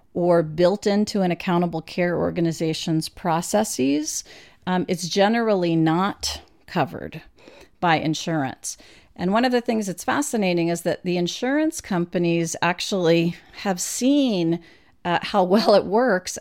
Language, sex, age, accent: English, female, 40-59, American